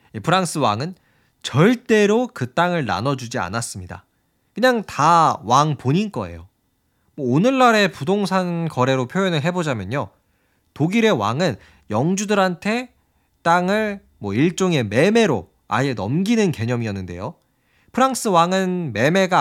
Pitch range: 120-200 Hz